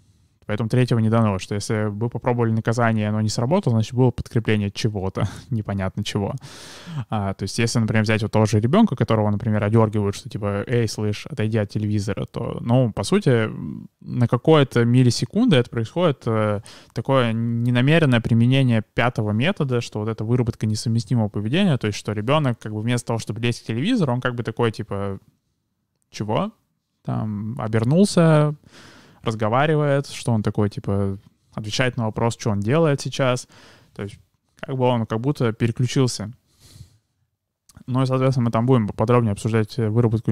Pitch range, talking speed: 110-125 Hz, 160 wpm